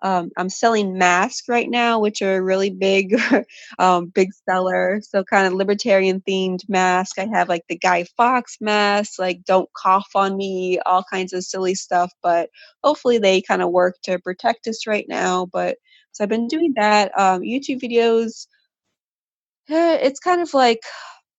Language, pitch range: English, 185-230 Hz